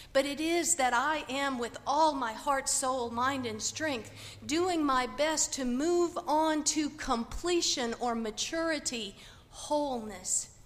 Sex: female